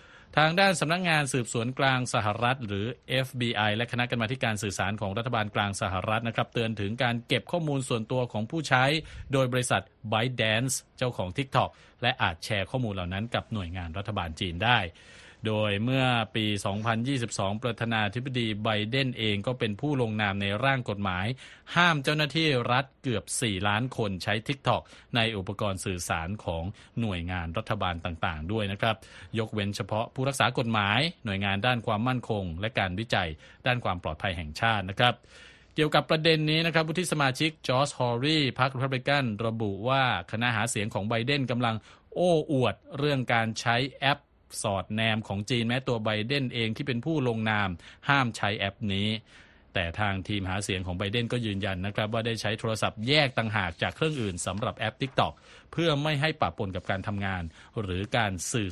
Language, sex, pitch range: Thai, male, 100-130 Hz